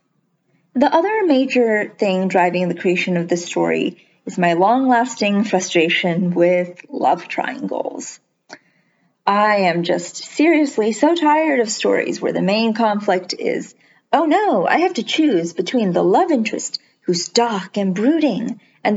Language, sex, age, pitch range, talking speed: English, female, 30-49, 195-270 Hz, 145 wpm